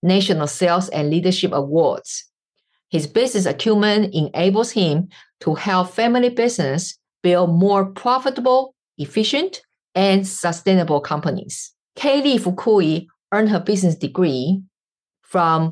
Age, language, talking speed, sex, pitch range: 50-69, English, 105 wpm, female, 155-195 Hz